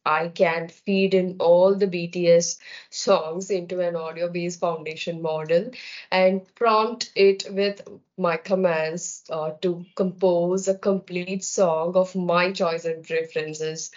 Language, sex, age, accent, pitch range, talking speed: English, female, 20-39, Indian, 160-190 Hz, 130 wpm